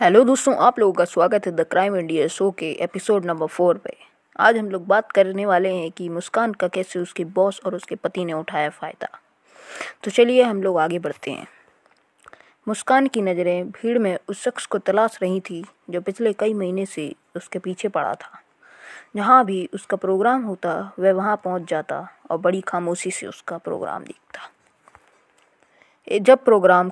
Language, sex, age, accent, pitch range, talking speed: Hindi, female, 20-39, native, 180-220 Hz, 180 wpm